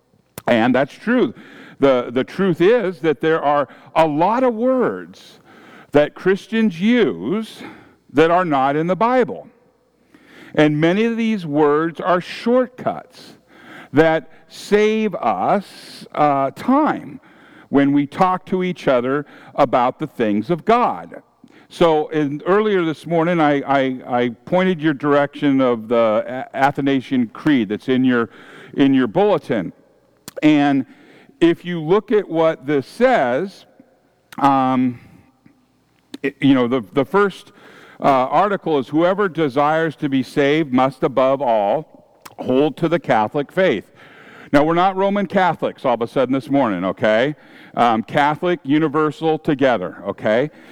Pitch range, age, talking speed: 135-185 Hz, 50-69, 135 wpm